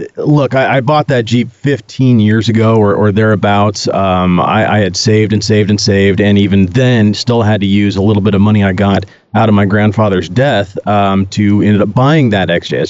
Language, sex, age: English, male, 30-49